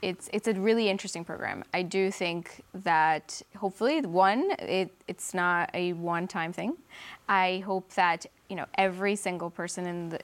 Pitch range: 175-225 Hz